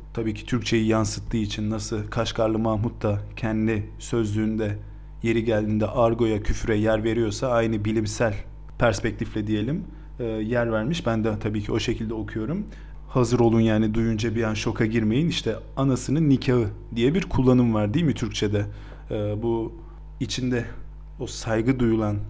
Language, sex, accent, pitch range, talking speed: Turkish, male, native, 110-130 Hz, 145 wpm